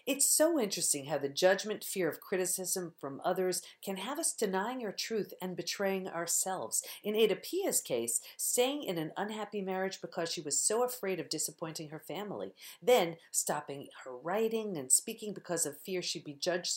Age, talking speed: 50-69, 180 wpm